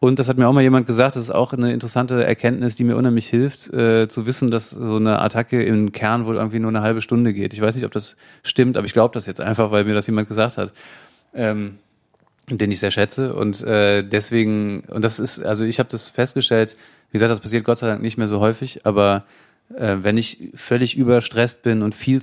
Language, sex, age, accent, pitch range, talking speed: German, male, 30-49, German, 105-120 Hz, 240 wpm